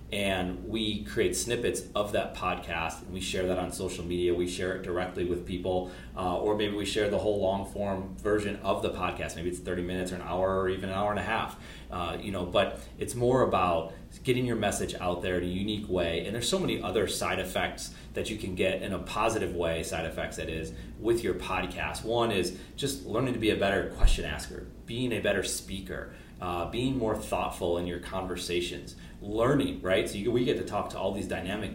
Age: 30-49